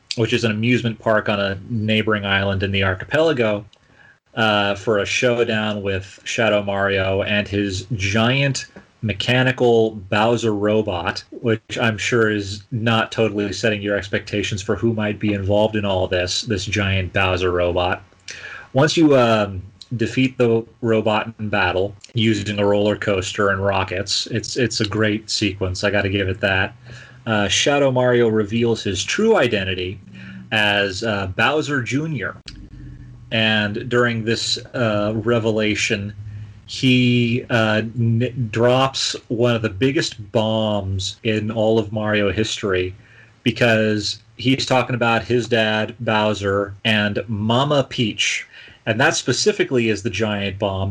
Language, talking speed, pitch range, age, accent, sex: English, 135 wpm, 100-120 Hz, 30-49, American, male